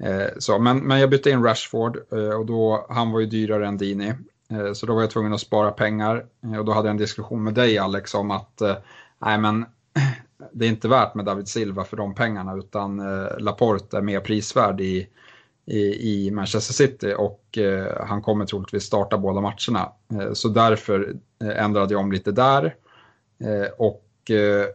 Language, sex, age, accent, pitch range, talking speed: Swedish, male, 30-49, Norwegian, 100-115 Hz, 160 wpm